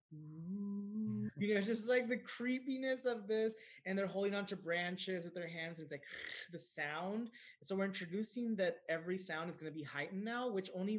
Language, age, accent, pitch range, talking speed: English, 20-39, American, 150-190 Hz, 200 wpm